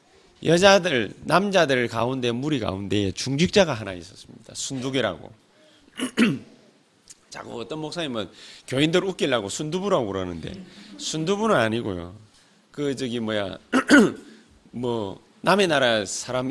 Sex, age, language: male, 30-49, Korean